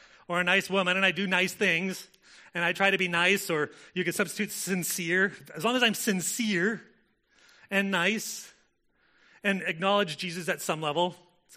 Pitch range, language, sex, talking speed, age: 145-190 Hz, English, male, 175 wpm, 30-49